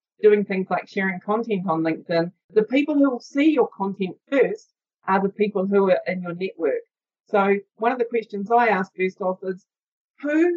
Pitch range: 190-240 Hz